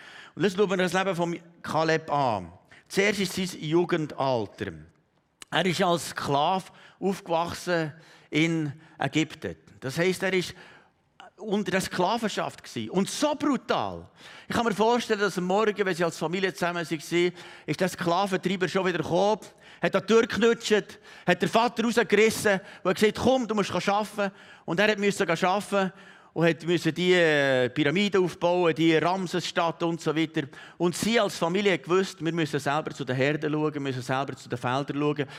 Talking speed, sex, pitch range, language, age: 165 wpm, male, 145-190 Hz, German, 50-69